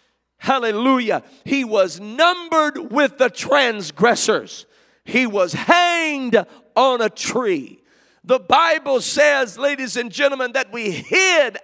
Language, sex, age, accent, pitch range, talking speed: English, male, 50-69, American, 220-295 Hz, 115 wpm